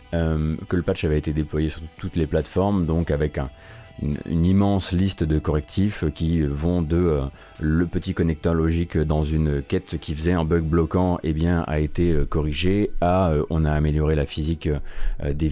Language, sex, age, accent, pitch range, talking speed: French, male, 30-49, French, 75-95 Hz, 200 wpm